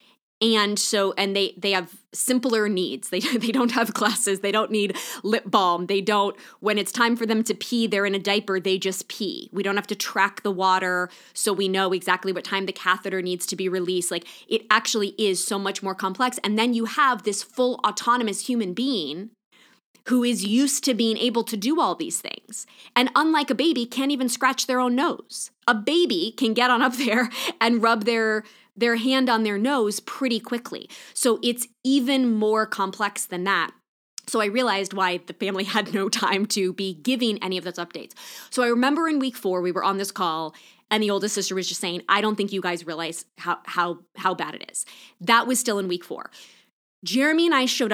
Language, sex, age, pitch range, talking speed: English, female, 20-39, 190-240 Hz, 215 wpm